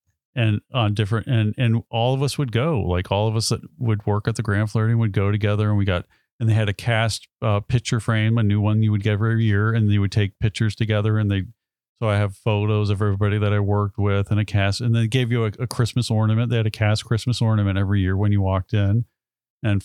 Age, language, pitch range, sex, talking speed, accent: 40-59, English, 100-115 Hz, male, 255 wpm, American